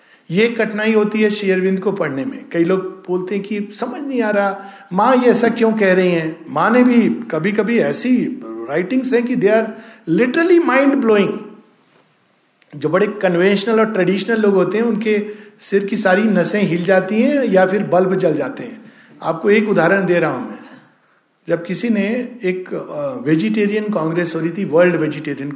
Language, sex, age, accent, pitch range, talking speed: Hindi, male, 50-69, native, 175-230 Hz, 175 wpm